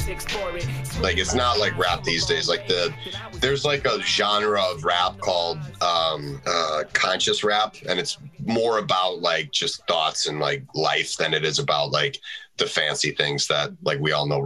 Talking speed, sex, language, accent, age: 180 wpm, male, English, American, 30-49